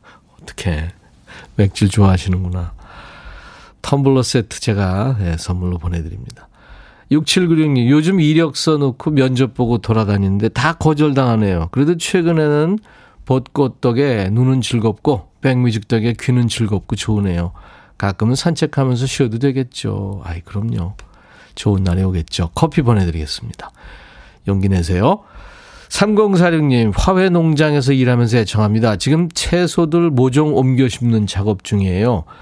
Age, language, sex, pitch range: 40-59, Korean, male, 100-145 Hz